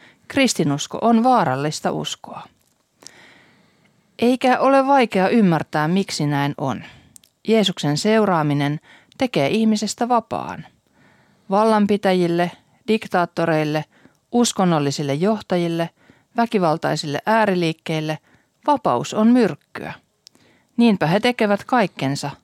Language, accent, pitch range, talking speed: Finnish, native, 150-210 Hz, 80 wpm